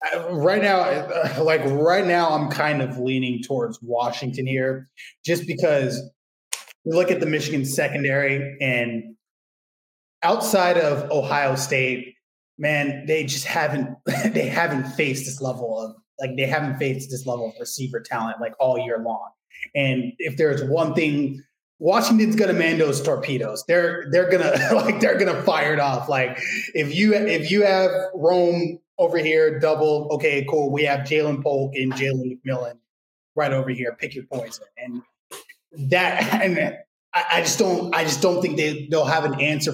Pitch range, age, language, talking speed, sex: 135-175 Hz, 20-39, English, 170 wpm, male